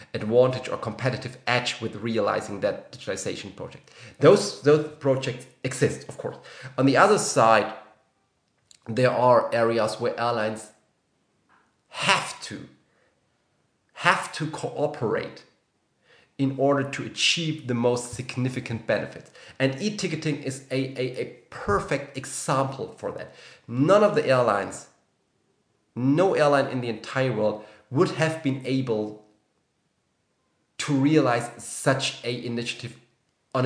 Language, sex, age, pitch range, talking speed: English, male, 30-49, 120-150 Hz, 120 wpm